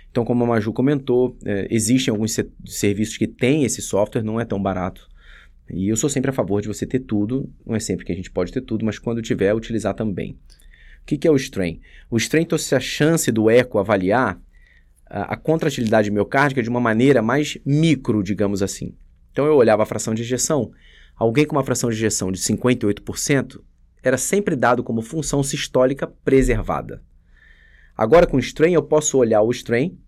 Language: Portuguese